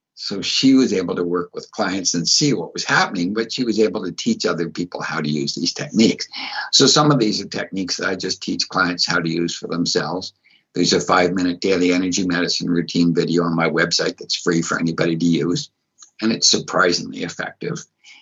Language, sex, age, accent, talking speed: English, male, 60-79, American, 210 wpm